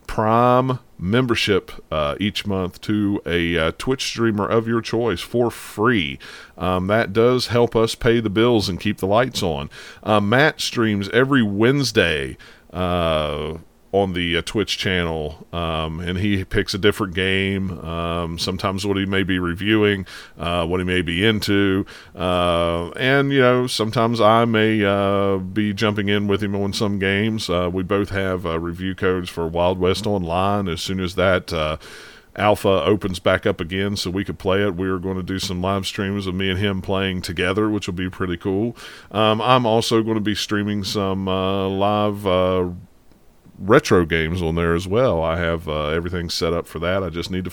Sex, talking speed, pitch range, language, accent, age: male, 185 wpm, 90-110 Hz, English, American, 40-59